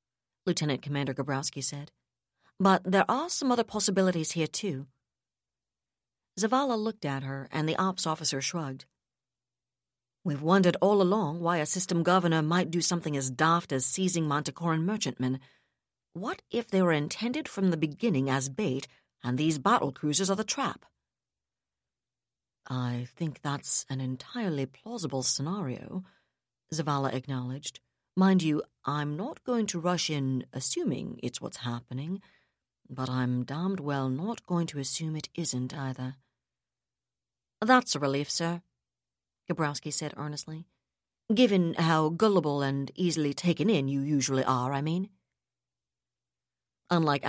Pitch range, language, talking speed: 135-185 Hz, English, 135 wpm